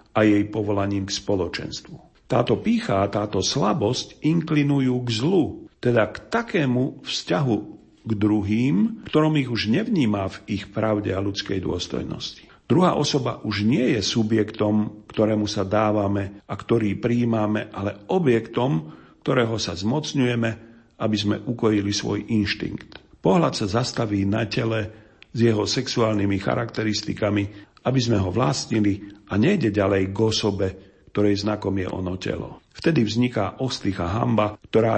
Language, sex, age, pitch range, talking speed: Slovak, male, 50-69, 100-120 Hz, 135 wpm